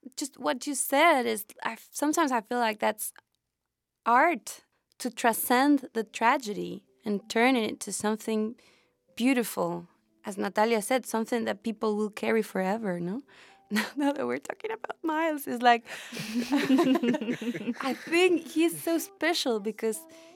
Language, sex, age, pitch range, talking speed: English, female, 20-39, 215-275 Hz, 135 wpm